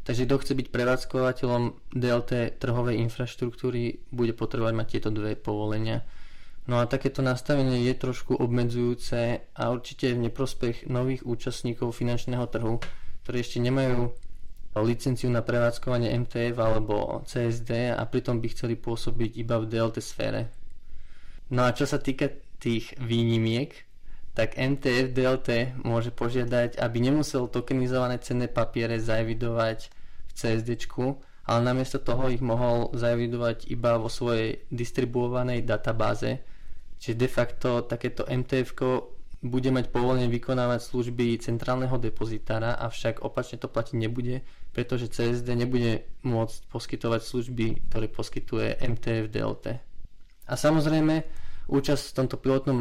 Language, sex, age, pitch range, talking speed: English, male, 20-39, 115-130 Hz, 125 wpm